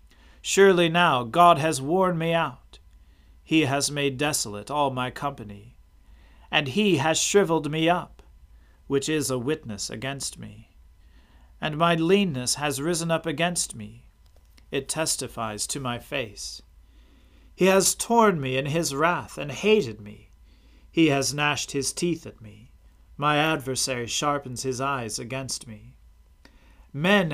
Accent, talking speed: American, 140 wpm